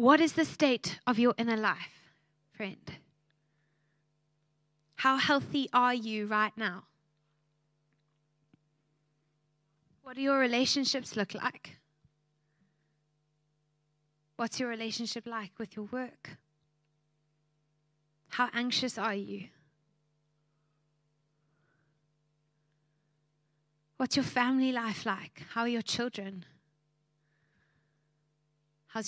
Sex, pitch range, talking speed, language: female, 150-230 Hz, 85 wpm, English